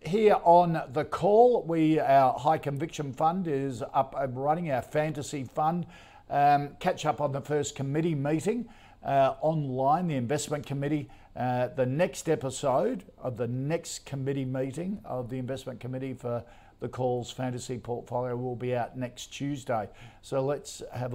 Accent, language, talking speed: Australian, English, 155 wpm